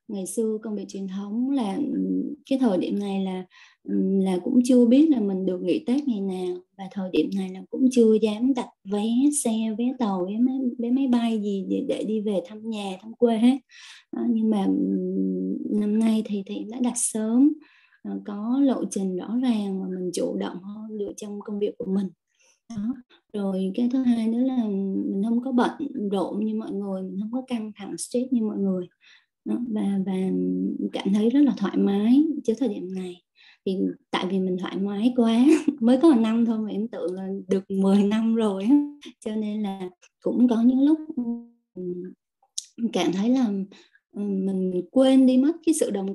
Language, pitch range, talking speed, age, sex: Vietnamese, 190-250 Hz, 190 wpm, 20-39, female